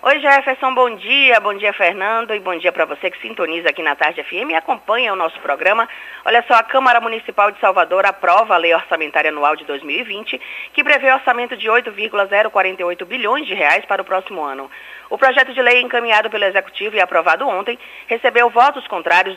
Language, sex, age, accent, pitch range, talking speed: Portuguese, female, 20-39, Brazilian, 175-245 Hz, 195 wpm